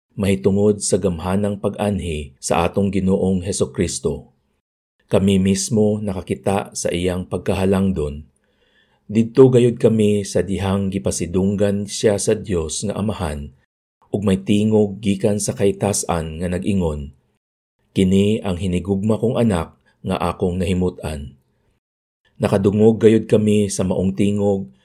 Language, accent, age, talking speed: Filipino, native, 50-69, 120 wpm